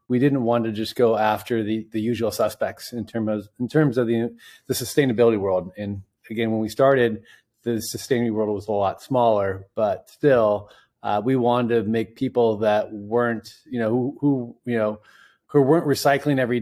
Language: Swedish